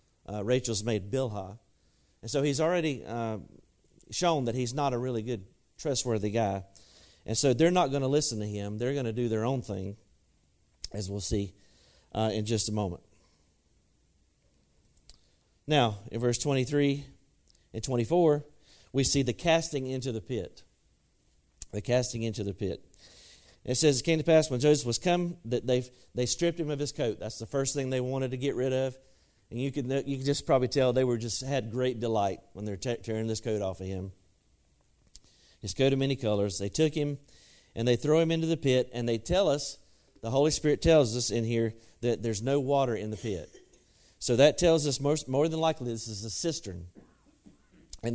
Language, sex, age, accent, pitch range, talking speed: English, male, 40-59, American, 105-140 Hz, 195 wpm